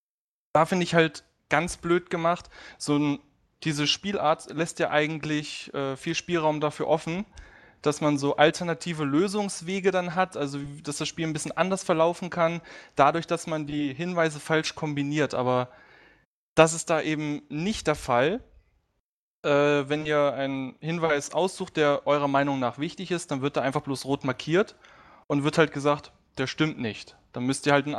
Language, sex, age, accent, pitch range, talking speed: English, male, 20-39, German, 140-165 Hz, 170 wpm